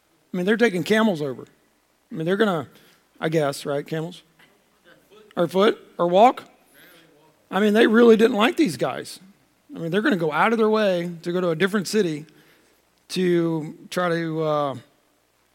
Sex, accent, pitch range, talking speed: male, American, 155-205 Hz, 180 wpm